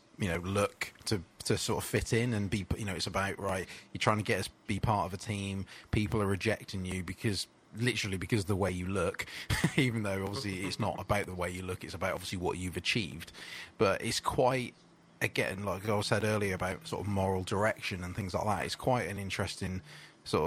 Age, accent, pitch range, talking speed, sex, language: 20-39, British, 95-105 Hz, 225 wpm, male, English